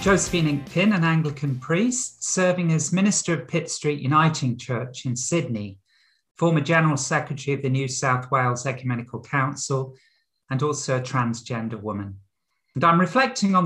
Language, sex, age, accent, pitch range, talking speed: English, male, 50-69, British, 125-175 Hz, 150 wpm